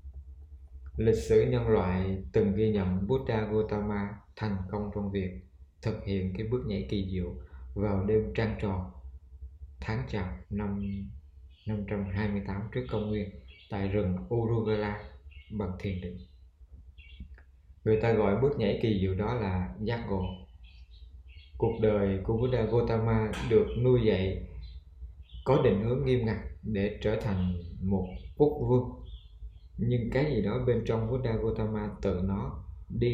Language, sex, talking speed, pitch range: Vietnamese, male, 140 wpm, 75-110 Hz